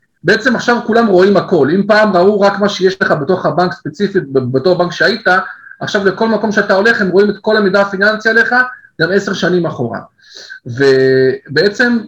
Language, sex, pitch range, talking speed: Hebrew, male, 175-225 Hz, 175 wpm